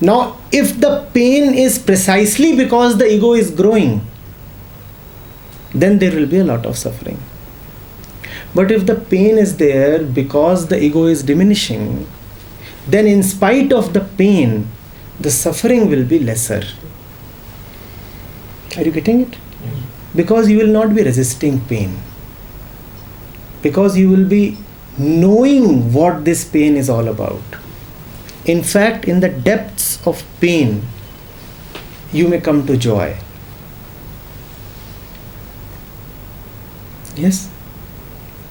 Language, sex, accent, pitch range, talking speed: English, male, Indian, 115-185 Hz, 120 wpm